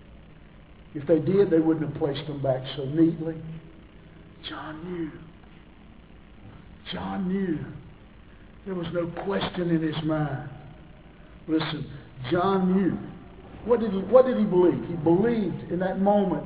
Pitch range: 155-200 Hz